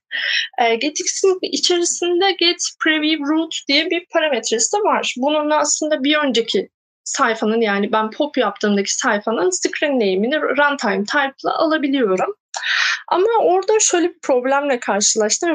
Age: 30-49